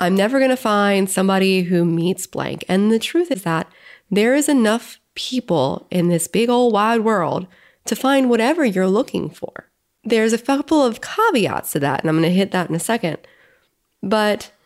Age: 20-39